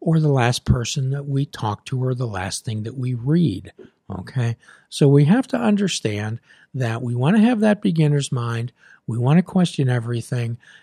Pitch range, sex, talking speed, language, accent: 120-155 Hz, male, 175 wpm, English, American